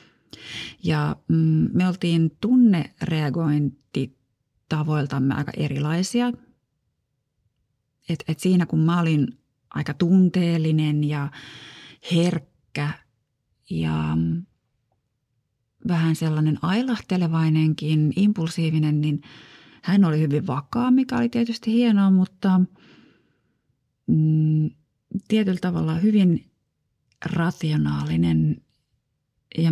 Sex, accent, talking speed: female, native, 65 wpm